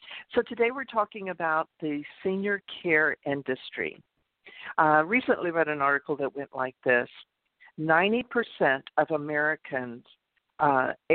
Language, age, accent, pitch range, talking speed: English, 50-69, American, 155-215 Hz, 120 wpm